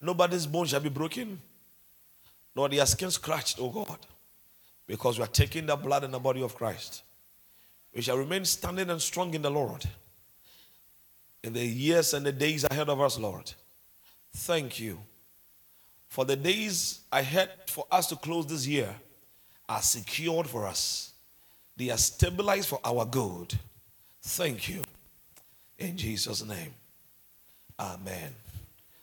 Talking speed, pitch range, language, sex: 145 wpm, 90-140 Hz, English, male